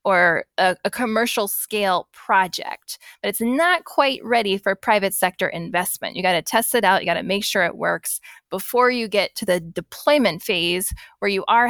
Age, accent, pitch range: 10-29, American, 190-240 Hz